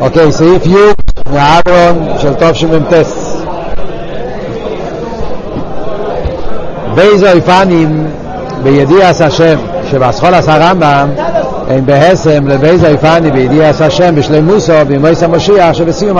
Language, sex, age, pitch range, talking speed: Hebrew, male, 60-79, 150-175 Hz, 90 wpm